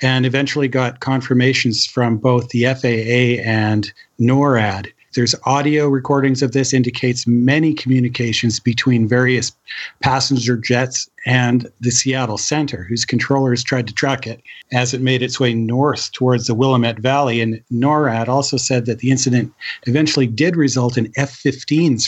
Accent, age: American, 50-69